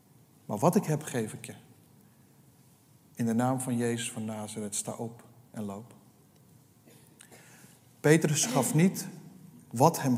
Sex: male